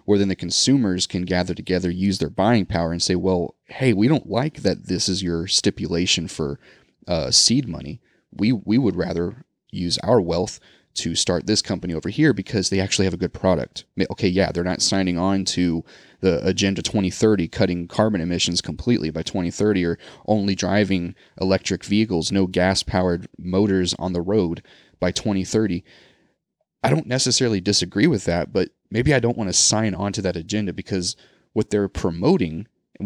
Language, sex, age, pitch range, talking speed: English, male, 30-49, 90-105 Hz, 180 wpm